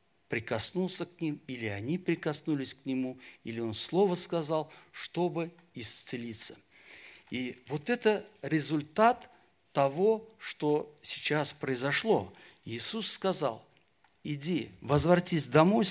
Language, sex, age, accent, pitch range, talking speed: Russian, male, 50-69, native, 125-165 Hz, 100 wpm